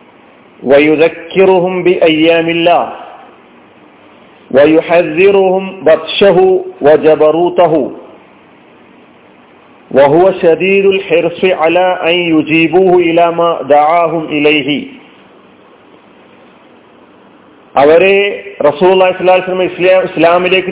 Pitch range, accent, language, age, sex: 165-190 Hz, native, Malayalam, 40-59, male